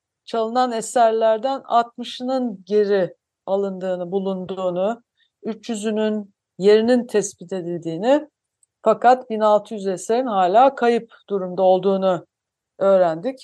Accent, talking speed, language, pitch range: native, 80 wpm, Turkish, 195-240 Hz